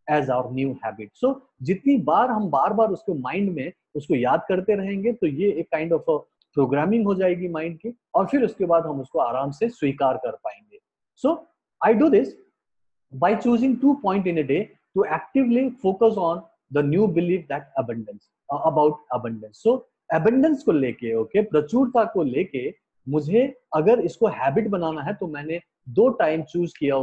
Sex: male